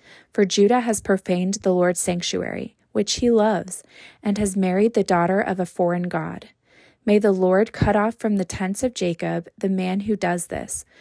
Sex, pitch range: female, 185-220 Hz